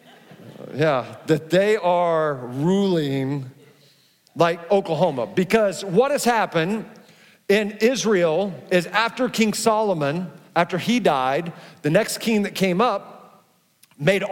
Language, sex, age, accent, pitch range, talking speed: English, male, 50-69, American, 175-220 Hz, 115 wpm